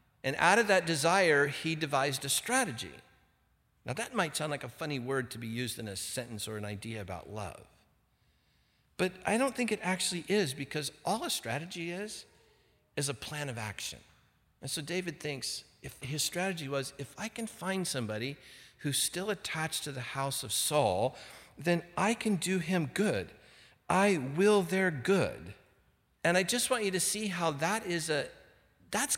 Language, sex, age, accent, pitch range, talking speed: English, male, 50-69, American, 120-175 Hz, 180 wpm